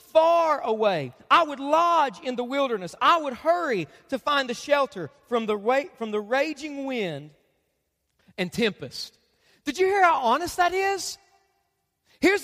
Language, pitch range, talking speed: English, 235-345 Hz, 155 wpm